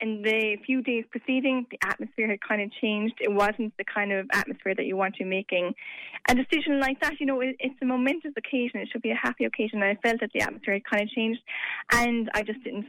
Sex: female